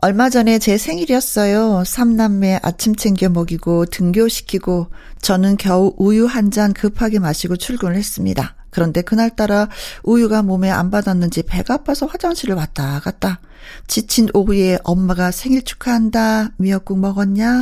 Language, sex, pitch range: Korean, female, 180-225 Hz